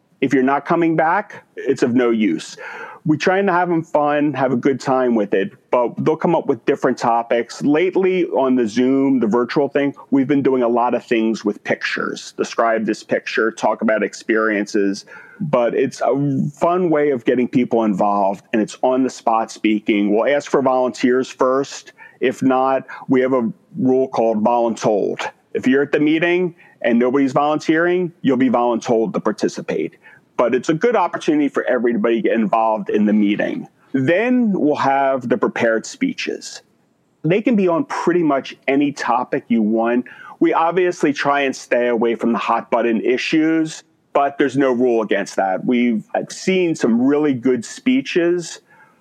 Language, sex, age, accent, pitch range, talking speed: English, male, 40-59, American, 120-160 Hz, 175 wpm